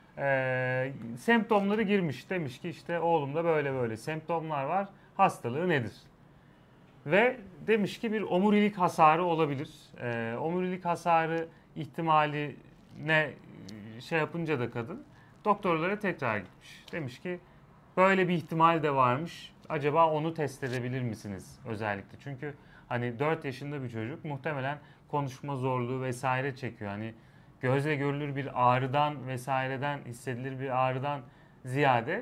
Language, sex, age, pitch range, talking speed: Turkish, male, 30-49, 130-170 Hz, 125 wpm